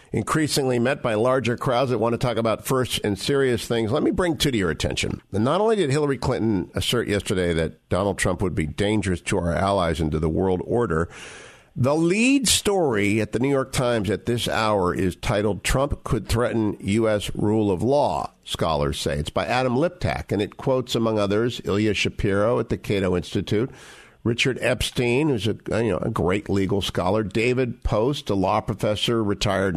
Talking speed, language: 190 wpm, English